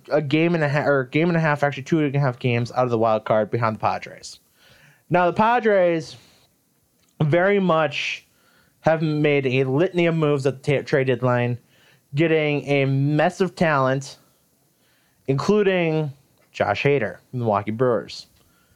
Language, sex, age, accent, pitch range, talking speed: English, male, 30-49, American, 130-170 Hz, 165 wpm